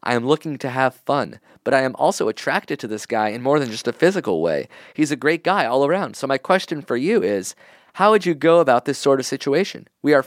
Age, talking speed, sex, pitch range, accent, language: 30-49, 255 wpm, male, 125-160 Hz, American, English